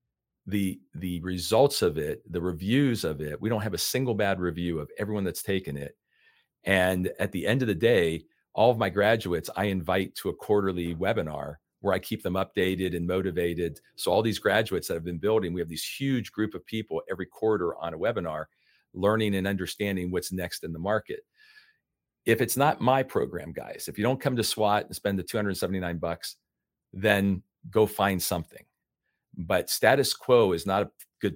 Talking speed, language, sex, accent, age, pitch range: 195 wpm, English, male, American, 40-59, 90-110 Hz